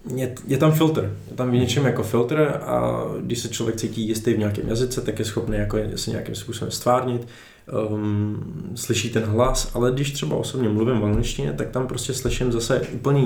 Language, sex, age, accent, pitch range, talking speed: Czech, male, 20-39, native, 110-125 Hz, 185 wpm